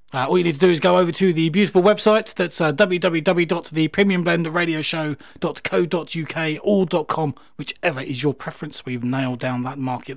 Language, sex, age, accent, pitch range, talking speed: English, male, 30-49, British, 130-170 Hz, 155 wpm